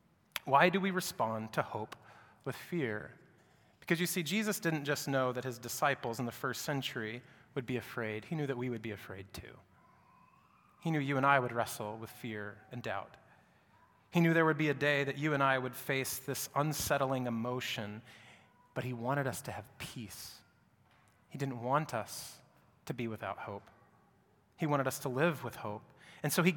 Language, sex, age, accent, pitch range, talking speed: English, male, 30-49, American, 120-160 Hz, 190 wpm